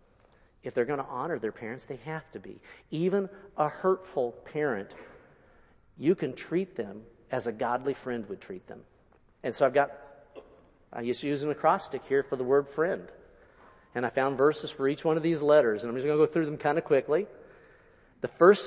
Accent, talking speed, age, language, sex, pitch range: American, 205 wpm, 50-69, English, male, 115-160 Hz